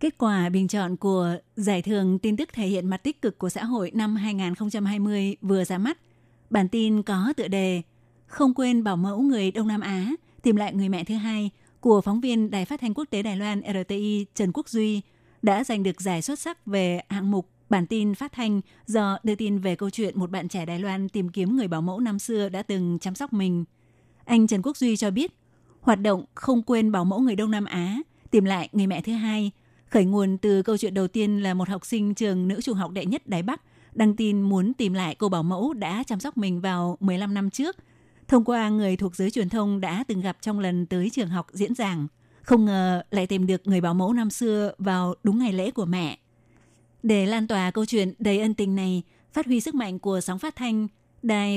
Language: Vietnamese